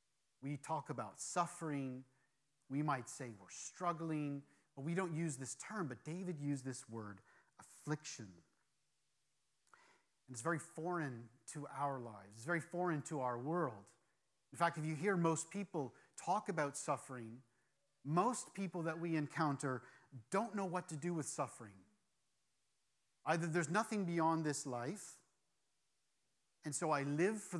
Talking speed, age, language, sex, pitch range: 145 wpm, 40-59, English, male, 130-170 Hz